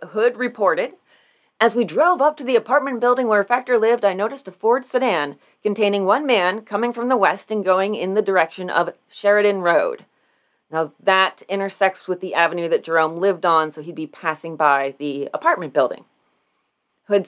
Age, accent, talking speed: 30-49, American, 180 wpm